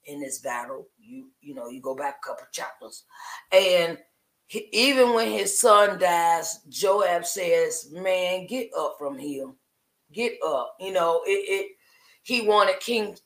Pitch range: 175-210 Hz